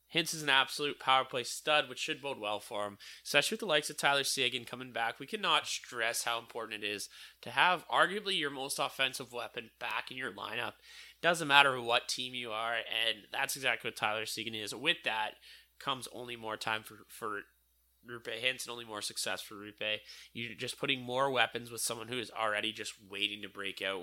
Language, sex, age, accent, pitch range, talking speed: English, male, 20-39, American, 105-130 Hz, 210 wpm